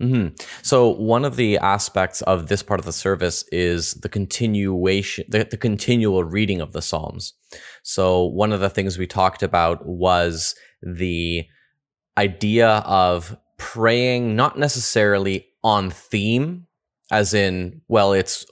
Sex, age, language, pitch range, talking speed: male, 20-39, English, 90-105 Hz, 140 wpm